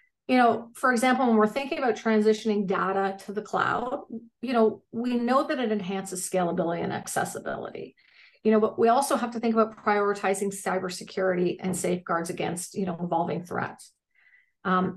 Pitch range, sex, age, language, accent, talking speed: 200-245 Hz, female, 40-59, English, American, 170 wpm